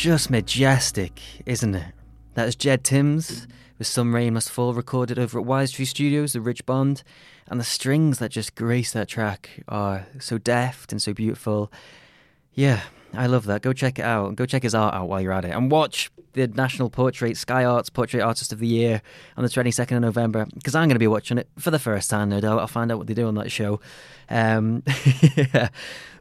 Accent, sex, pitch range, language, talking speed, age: British, male, 115-140 Hz, English, 210 wpm, 20-39